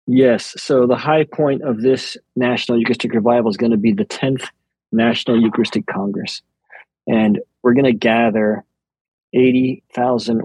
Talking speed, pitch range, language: 145 wpm, 115-130 Hz, English